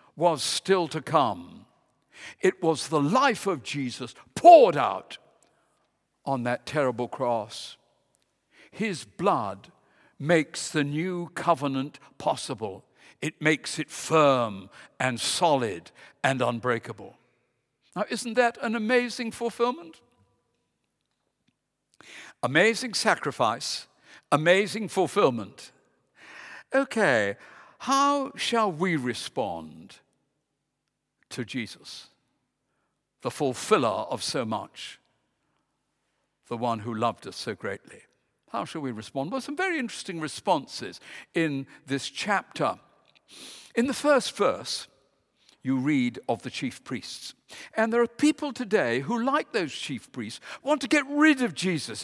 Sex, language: male, English